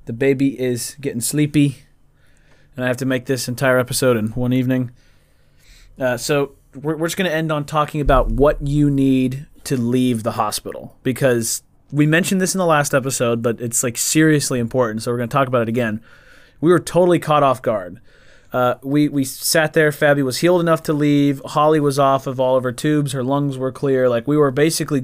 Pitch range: 120-145 Hz